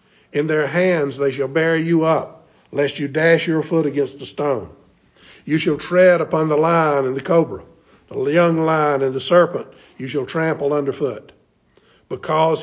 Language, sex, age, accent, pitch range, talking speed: English, male, 60-79, American, 140-160 Hz, 170 wpm